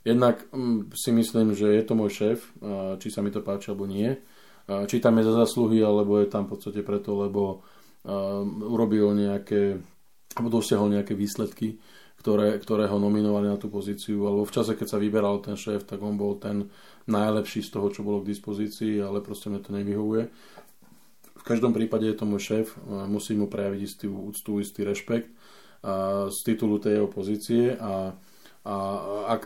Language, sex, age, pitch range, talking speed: Slovak, male, 20-39, 100-110 Hz, 175 wpm